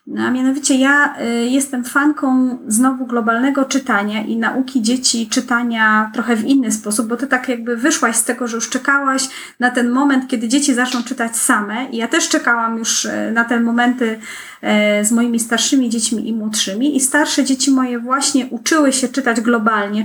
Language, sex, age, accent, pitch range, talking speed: Polish, female, 30-49, native, 230-280 Hz, 175 wpm